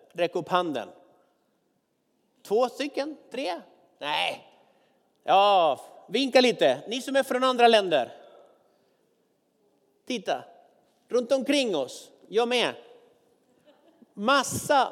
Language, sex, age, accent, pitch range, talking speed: Swedish, male, 50-69, native, 200-270 Hz, 95 wpm